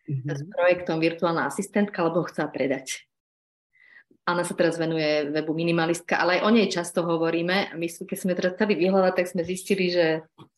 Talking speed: 170 wpm